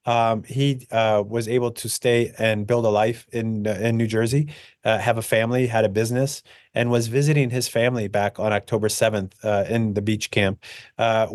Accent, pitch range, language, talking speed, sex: American, 105-120 Hz, English, 200 wpm, male